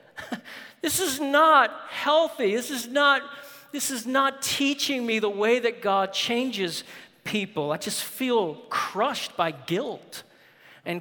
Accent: American